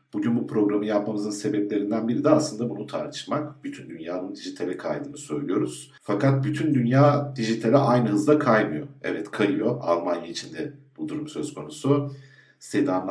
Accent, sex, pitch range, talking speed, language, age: native, male, 115-145 Hz, 140 wpm, Turkish, 50-69